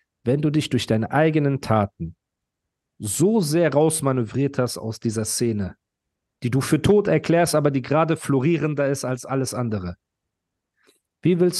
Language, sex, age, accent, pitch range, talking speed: German, male, 40-59, German, 110-140 Hz, 150 wpm